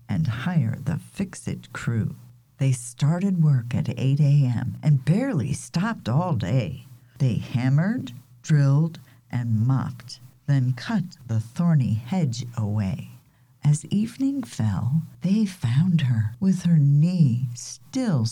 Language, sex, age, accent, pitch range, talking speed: English, female, 50-69, American, 120-160 Hz, 120 wpm